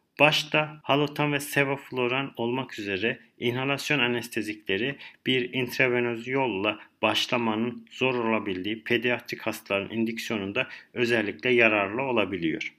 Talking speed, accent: 95 wpm, native